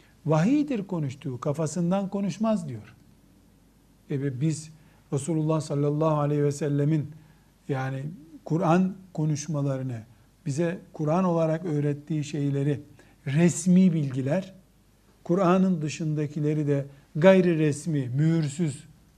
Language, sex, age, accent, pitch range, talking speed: Turkish, male, 60-79, native, 145-185 Hz, 90 wpm